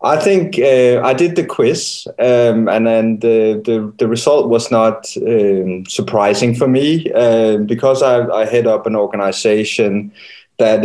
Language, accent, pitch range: English, Danish, 110-125 Hz